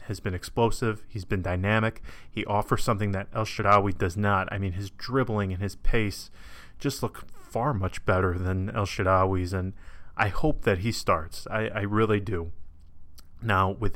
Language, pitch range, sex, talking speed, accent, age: English, 95-110 Hz, male, 175 wpm, American, 30-49